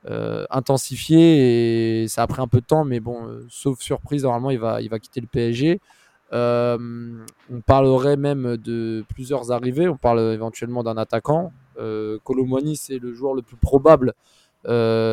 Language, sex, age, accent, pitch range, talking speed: French, male, 20-39, French, 115-140 Hz, 175 wpm